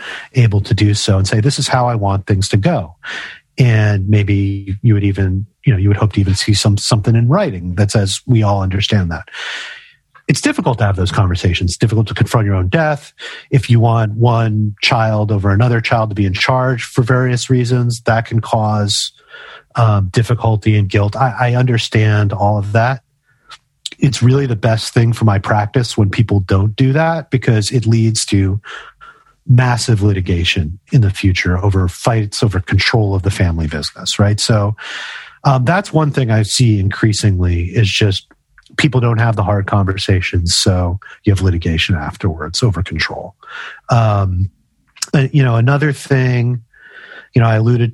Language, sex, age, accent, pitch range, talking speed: English, male, 30-49, American, 100-125 Hz, 175 wpm